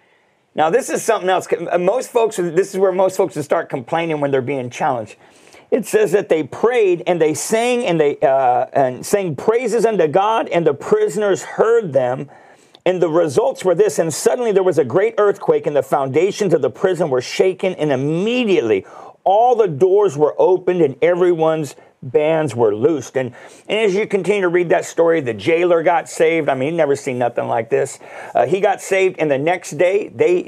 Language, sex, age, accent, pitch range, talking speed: English, male, 50-69, American, 155-235 Hz, 200 wpm